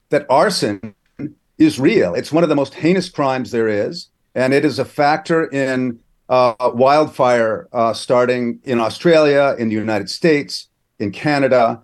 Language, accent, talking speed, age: English, American, 155 wpm, 50-69